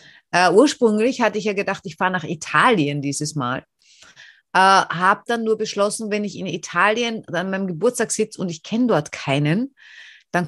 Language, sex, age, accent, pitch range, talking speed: German, female, 30-49, German, 175-225 Hz, 180 wpm